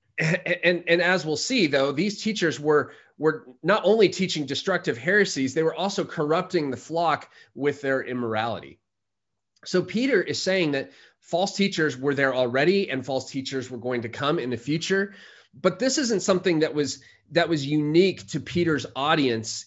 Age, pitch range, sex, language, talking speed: 30-49, 130-185 Hz, male, English, 170 wpm